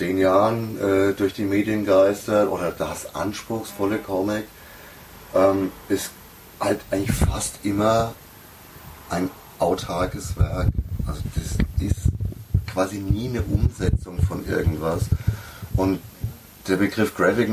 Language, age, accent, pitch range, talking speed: German, 30-49, German, 95-110 Hz, 110 wpm